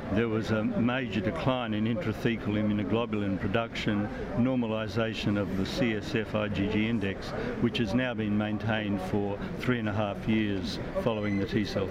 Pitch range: 105-120 Hz